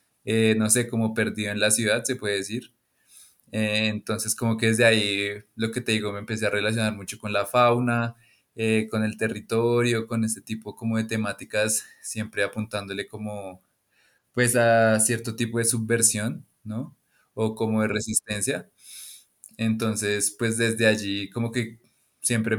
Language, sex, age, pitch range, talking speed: English, male, 20-39, 105-115 Hz, 160 wpm